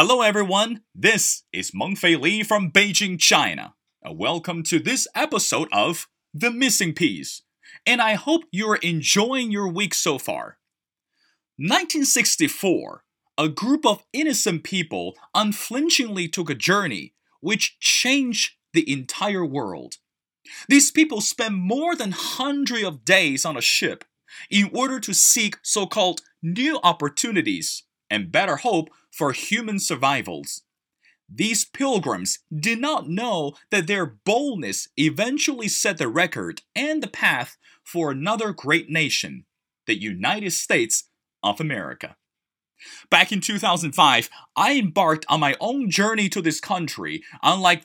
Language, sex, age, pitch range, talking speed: English, male, 30-49, 170-240 Hz, 130 wpm